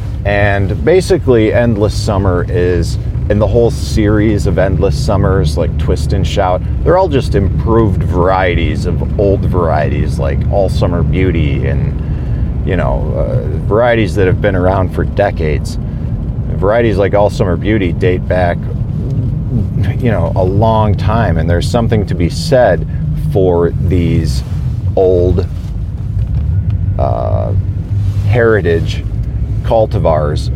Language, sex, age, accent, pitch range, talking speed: English, male, 40-59, American, 80-110 Hz, 125 wpm